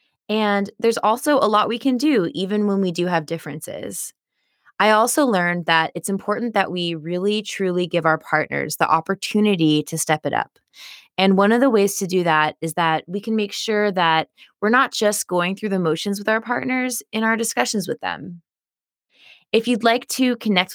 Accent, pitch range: American, 160-210 Hz